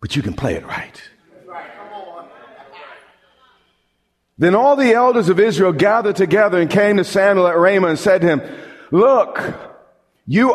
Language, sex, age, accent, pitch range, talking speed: English, male, 40-59, American, 170-215 Hz, 150 wpm